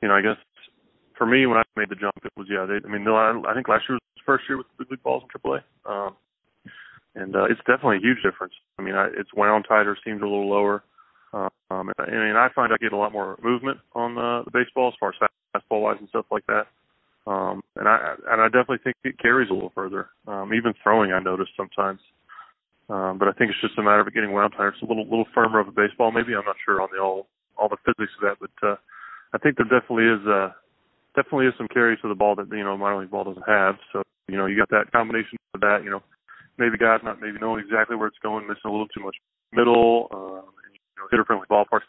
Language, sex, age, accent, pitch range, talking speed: English, male, 20-39, American, 100-115 Hz, 260 wpm